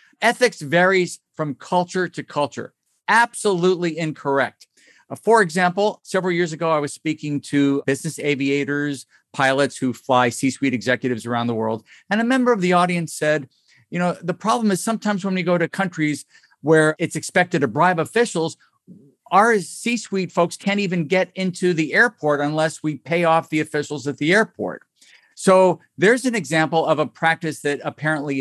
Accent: American